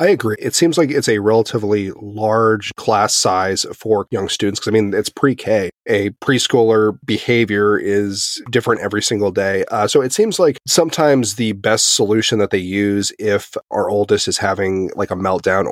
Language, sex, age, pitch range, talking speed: English, male, 30-49, 100-115 Hz, 180 wpm